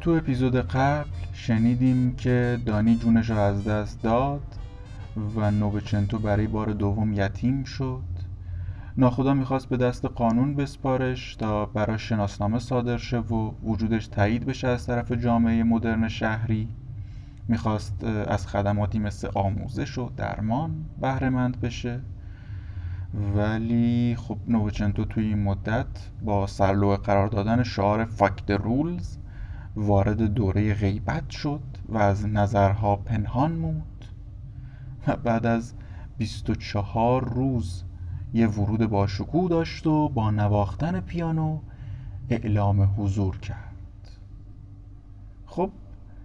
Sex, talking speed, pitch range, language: male, 110 wpm, 100-125 Hz, Persian